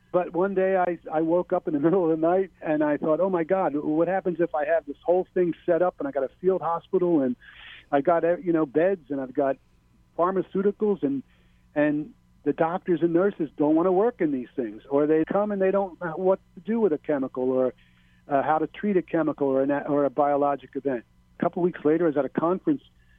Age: 50-69